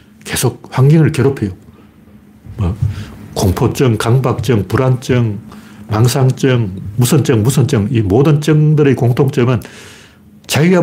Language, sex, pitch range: Korean, male, 110-165 Hz